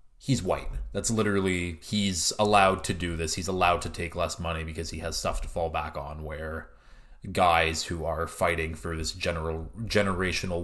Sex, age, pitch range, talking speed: male, 30-49, 80-105 Hz, 180 wpm